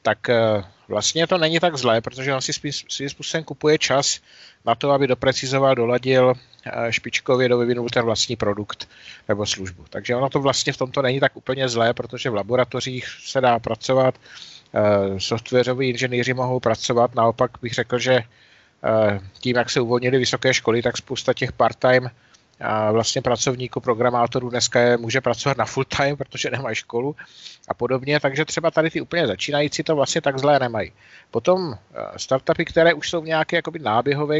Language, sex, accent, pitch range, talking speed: Czech, male, native, 120-140 Hz, 160 wpm